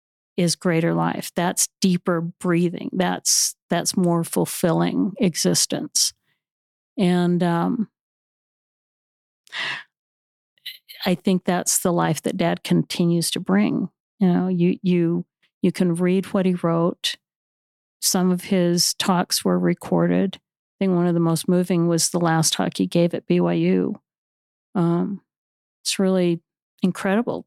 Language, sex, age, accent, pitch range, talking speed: English, female, 50-69, American, 170-195 Hz, 125 wpm